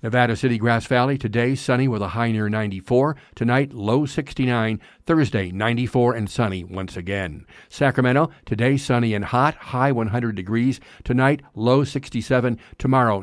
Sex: male